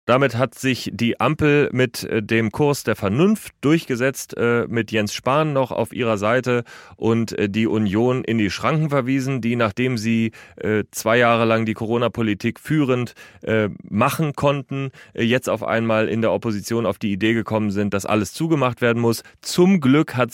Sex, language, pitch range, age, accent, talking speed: male, German, 110-130 Hz, 30-49, German, 160 wpm